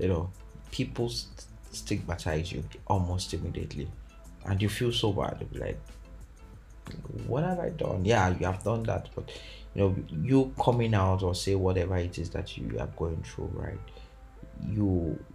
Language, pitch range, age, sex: English, 85-110 Hz, 30-49, male